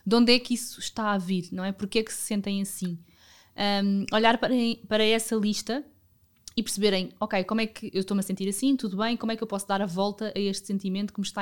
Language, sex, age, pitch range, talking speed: Portuguese, female, 20-39, 195-225 Hz, 255 wpm